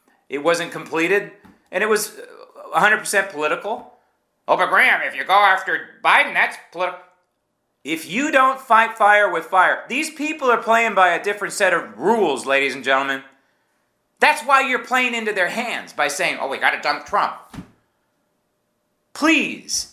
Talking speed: 165 wpm